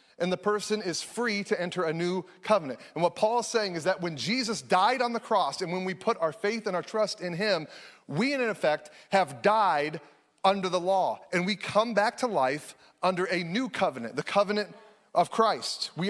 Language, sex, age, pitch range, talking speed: English, male, 30-49, 175-215 Hz, 215 wpm